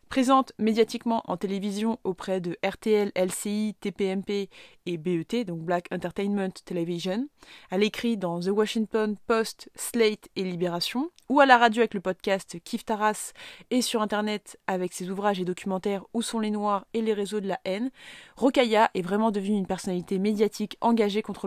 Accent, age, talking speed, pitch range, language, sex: French, 20-39, 170 wpm, 185-230 Hz, French, female